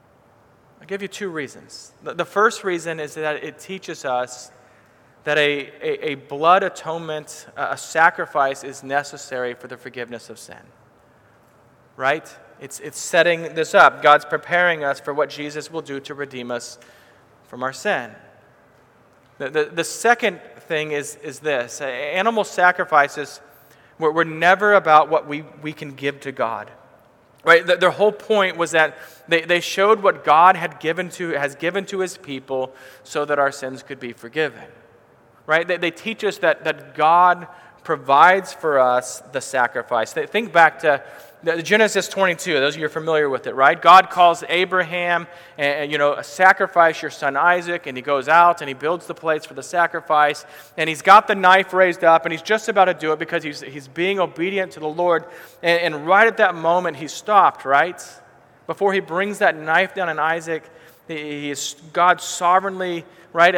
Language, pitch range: English, 145-180 Hz